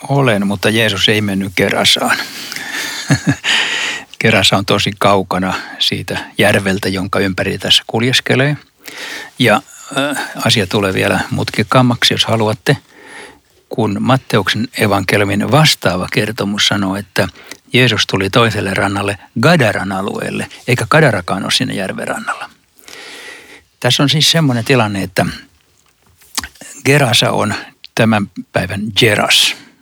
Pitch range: 100-130 Hz